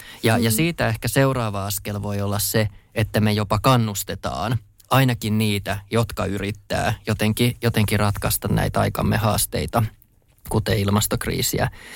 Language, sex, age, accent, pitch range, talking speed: Finnish, male, 20-39, native, 100-115 Hz, 125 wpm